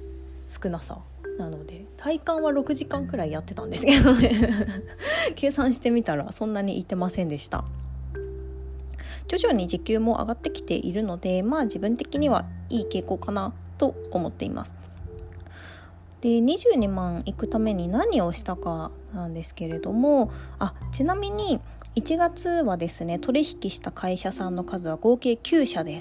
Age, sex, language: 20-39, female, Japanese